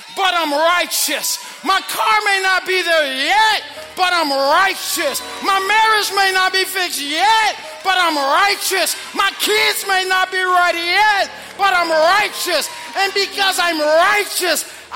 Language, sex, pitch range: English, male, 275-375 Hz